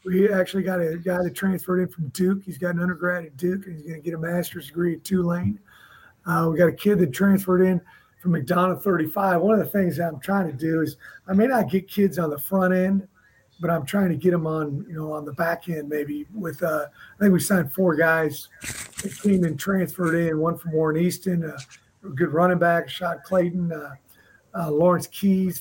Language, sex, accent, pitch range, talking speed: English, male, American, 155-180 Hz, 225 wpm